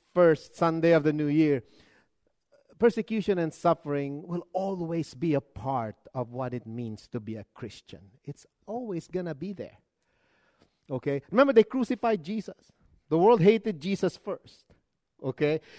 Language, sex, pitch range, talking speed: English, male, 140-210 Hz, 150 wpm